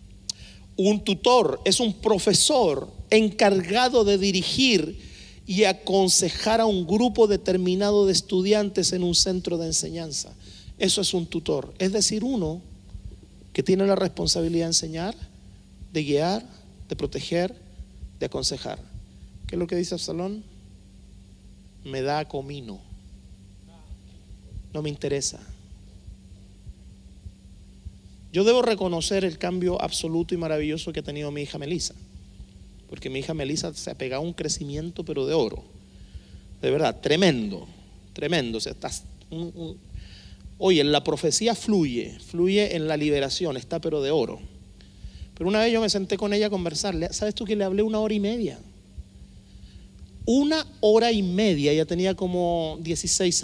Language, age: Spanish, 40-59